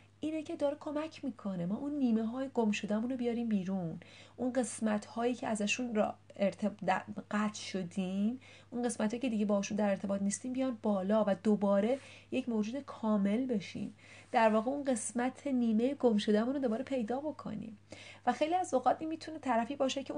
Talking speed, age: 175 wpm, 30-49